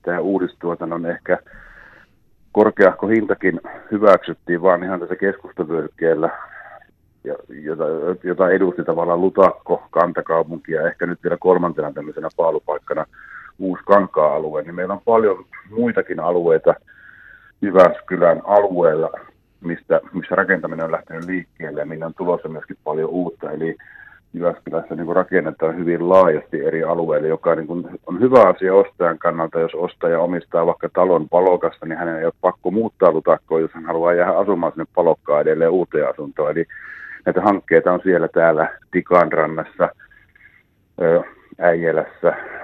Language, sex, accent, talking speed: Finnish, male, native, 130 wpm